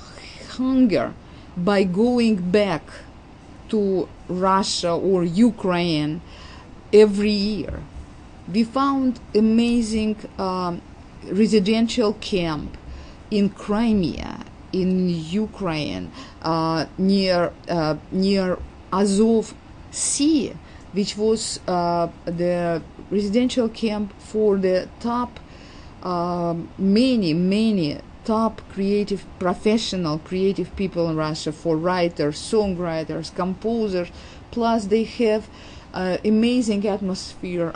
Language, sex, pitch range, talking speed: English, female, 165-215 Hz, 85 wpm